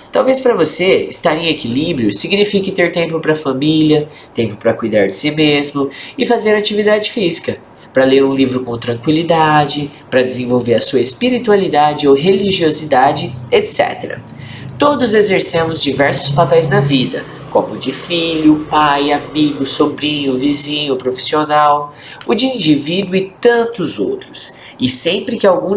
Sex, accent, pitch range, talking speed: male, Brazilian, 135-190 Hz, 140 wpm